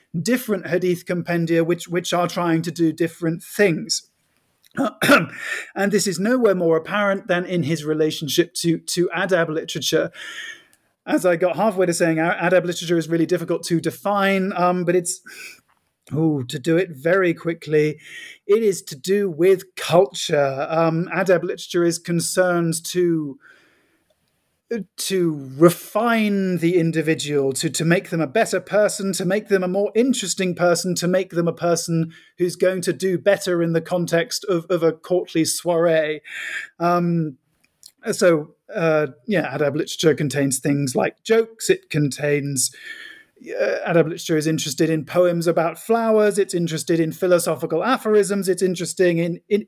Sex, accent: male, British